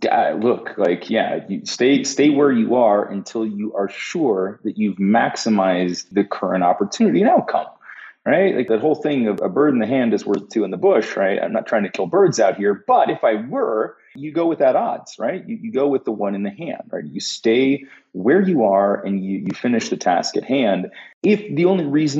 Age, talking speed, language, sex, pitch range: 30-49, 225 wpm, English, male, 100-140 Hz